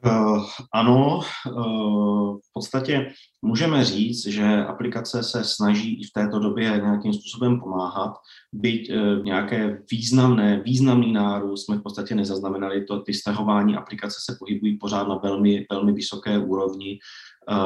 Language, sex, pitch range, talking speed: Czech, male, 95-105 Hz, 125 wpm